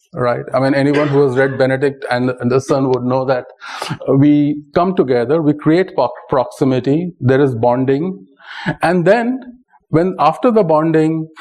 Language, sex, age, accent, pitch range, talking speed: English, male, 40-59, Indian, 135-175 Hz, 160 wpm